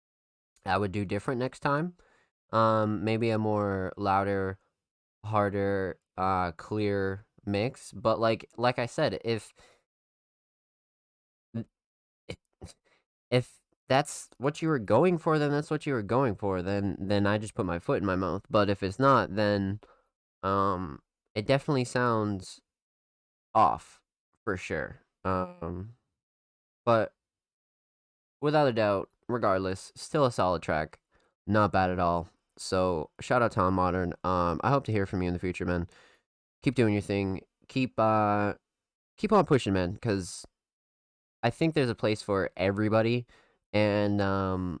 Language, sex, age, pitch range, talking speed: English, male, 20-39, 90-110 Hz, 145 wpm